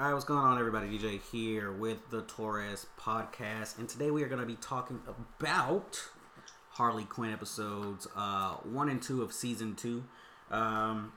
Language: English